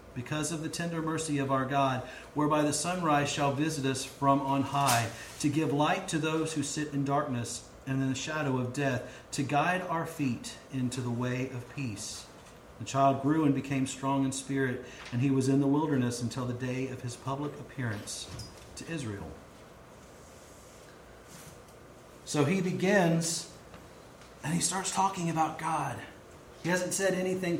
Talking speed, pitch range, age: 165 wpm, 130-160 Hz, 40-59